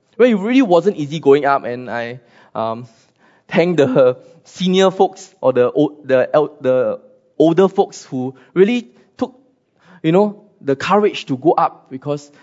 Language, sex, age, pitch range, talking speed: English, male, 20-39, 130-190 Hz, 150 wpm